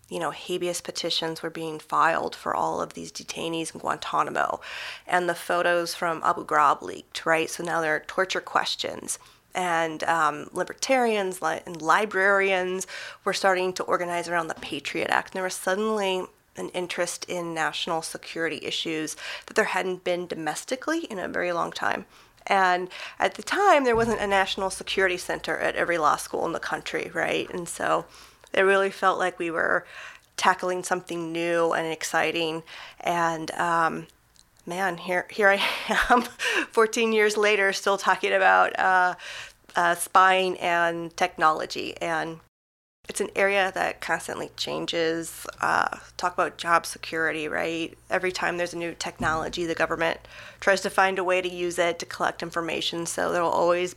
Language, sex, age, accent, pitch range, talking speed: English, female, 30-49, American, 165-190 Hz, 160 wpm